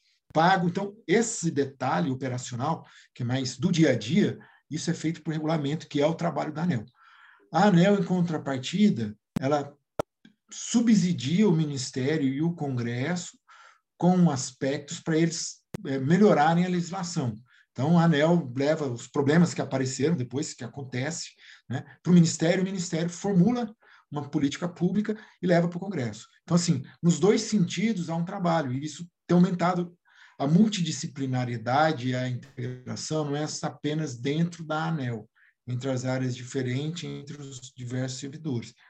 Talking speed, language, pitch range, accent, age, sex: 150 wpm, Portuguese, 135-175 Hz, Brazilian, 50-69, male